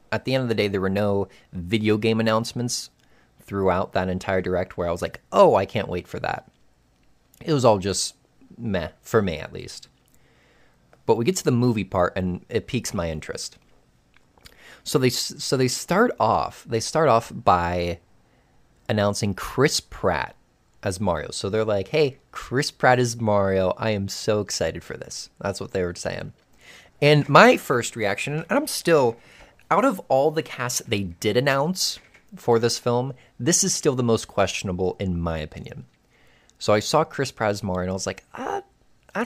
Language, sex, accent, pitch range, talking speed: English, male, American, 95-135 Hz, 185 wpm